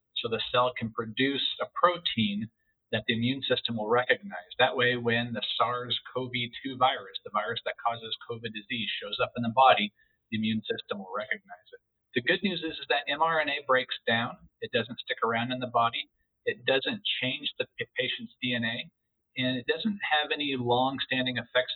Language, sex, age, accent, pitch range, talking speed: English, male, 50-69, American, 115-150 Hz, 180 wpm